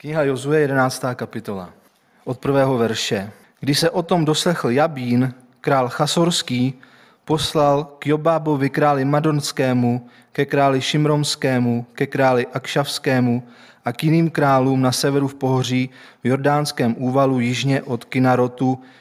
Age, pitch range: 30-49, 125-145 Hz